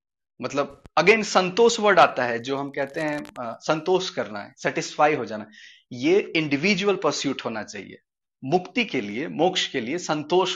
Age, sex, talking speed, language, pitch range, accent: 30-49, male, 165 wpm, Hindi, 145-215 Hz, native